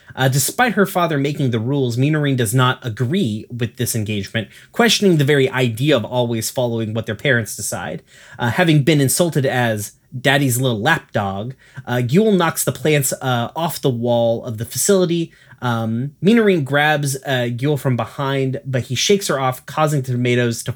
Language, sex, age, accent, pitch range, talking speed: English, male, 30-49, American, 120-150 Hz, 175 wpm